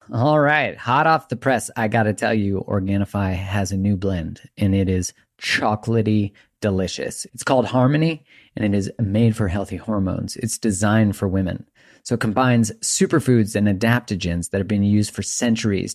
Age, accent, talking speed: 30-49, American, 175 wpm